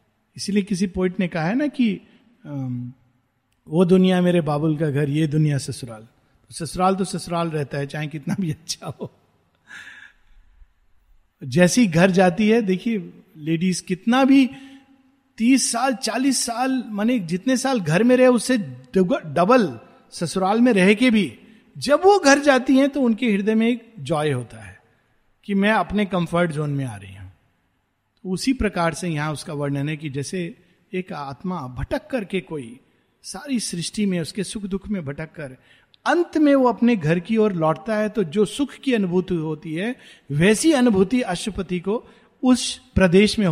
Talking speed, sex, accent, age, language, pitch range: 165 wpm, male, native, 50-69, Hindi, 155-225 Hz